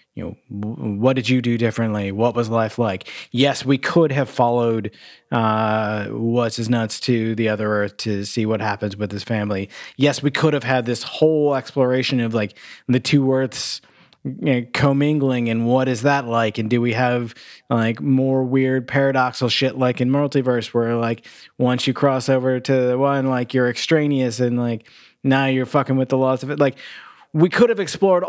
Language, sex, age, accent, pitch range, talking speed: English, male, 20-39, American, 115-135 Hz, 195 wpm